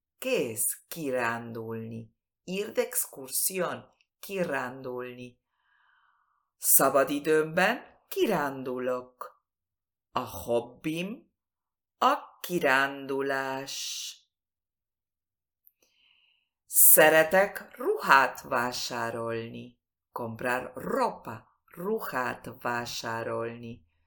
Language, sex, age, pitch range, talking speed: Spanish, female, 50-69, 115-180 Hz, 45 wpm